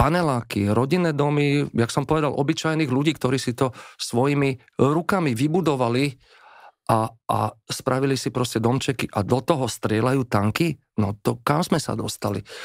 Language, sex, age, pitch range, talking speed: Slovak, male, 40-59, 110-145 Hz, 145 wpm